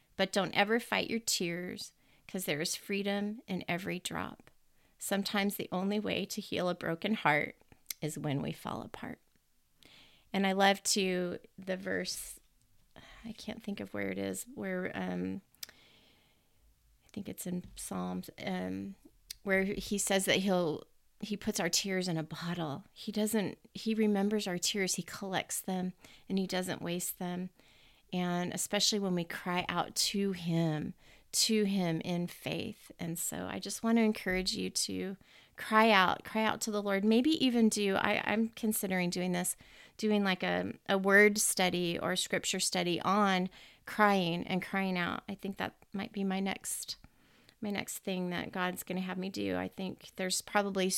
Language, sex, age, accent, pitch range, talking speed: English, female, 30-49, American, 175-205 Hz, 170 wpm